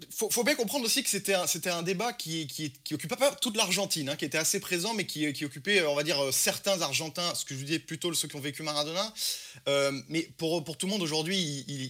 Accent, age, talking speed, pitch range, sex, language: French, 20-39, 255 wpm, 125-165 Hz, male, French